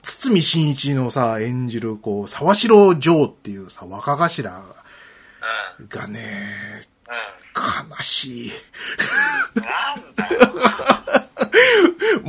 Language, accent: Japanese, native